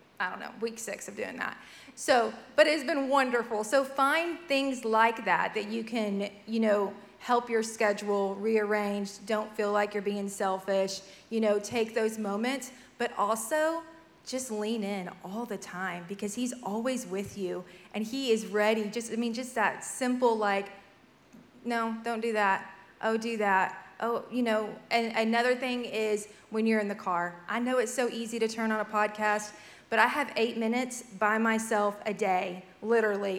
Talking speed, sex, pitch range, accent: 180 wpm, female, 200-230 Hz, American